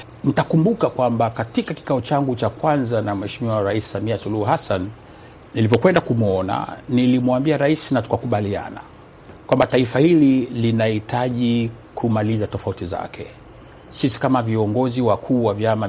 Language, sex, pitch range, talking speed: Swahili, male, 110-140 Hz, 120 wpm